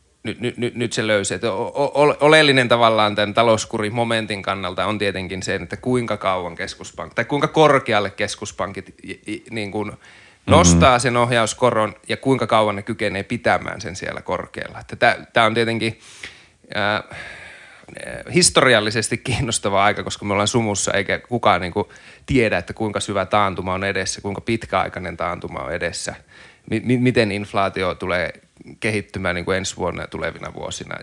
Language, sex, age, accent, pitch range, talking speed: Finnish, male, 30-49, native, 100-120 Hz, 150 wpm